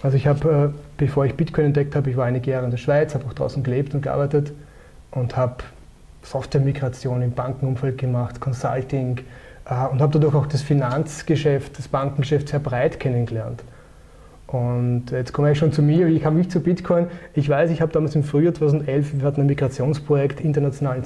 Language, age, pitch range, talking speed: English, 30-49, 135-155 Hz, 180 wpm